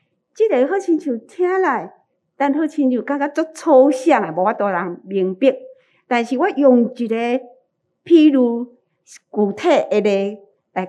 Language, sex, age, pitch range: Chinese, female, 50-69, 205-285 Hz